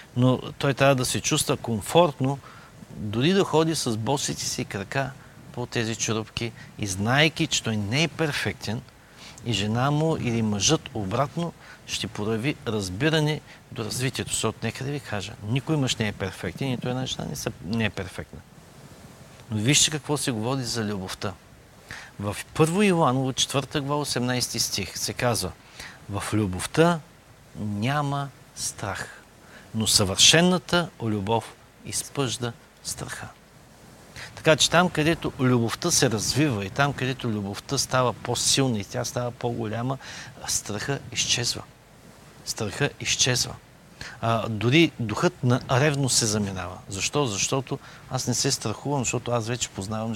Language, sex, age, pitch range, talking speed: Bulgarian, male, 50-69, 110-140 Hz, 140 wpm